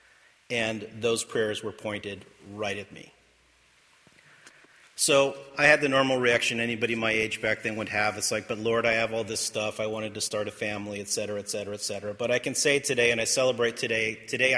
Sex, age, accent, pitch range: male, 40-59, American, 105-115 Hz